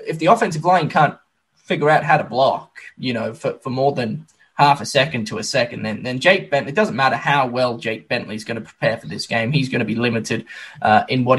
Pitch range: 130-185 Hz